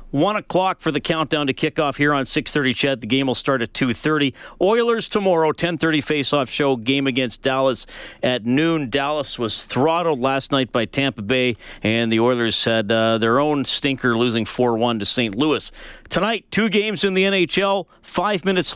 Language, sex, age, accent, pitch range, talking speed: English, male, 40-59, American, 130-180 Hz, 180 wpm